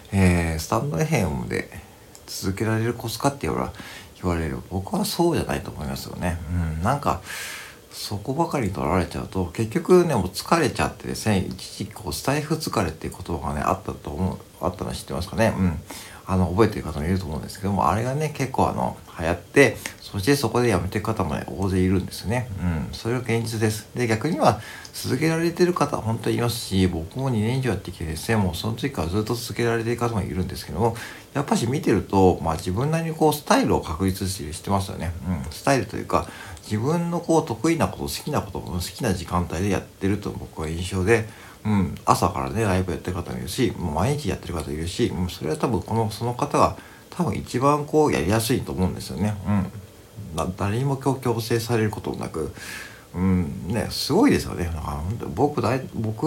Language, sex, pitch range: Japanese, male, 90-120 Hz